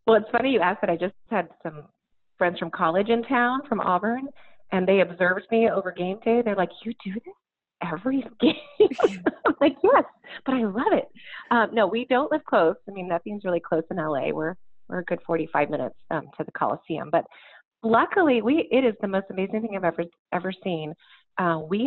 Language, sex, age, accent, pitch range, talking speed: English, female, 30-49, American, 170-225 Hz, 210 wpm